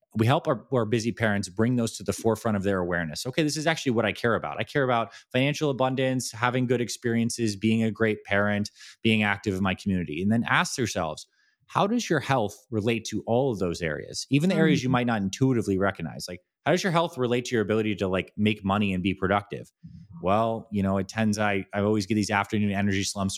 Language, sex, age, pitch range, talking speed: English, male, 20-39, 95-115 Hz, 230 wpm